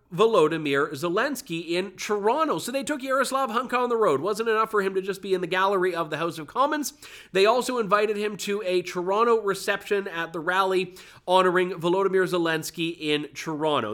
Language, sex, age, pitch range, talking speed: English, male, 30-49, 160-210 Hz, 190 wpm